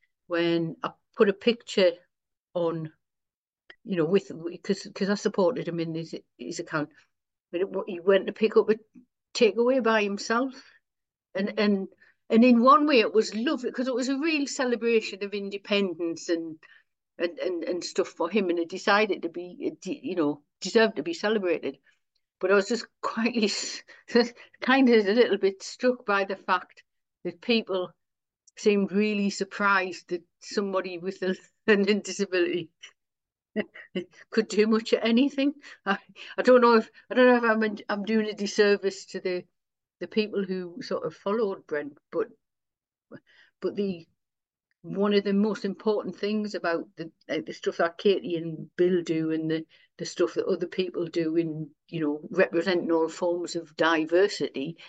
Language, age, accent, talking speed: English, 60-79, British, 165 wpm